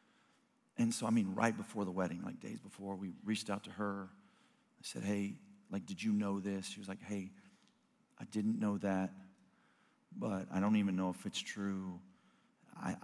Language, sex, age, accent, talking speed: English, male, 40-59, American, 190 wpm